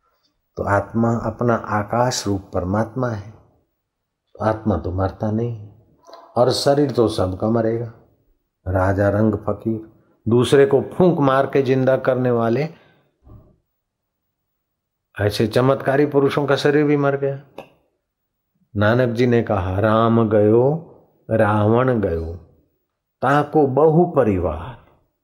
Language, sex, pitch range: Hindi, male, 100-125 Hz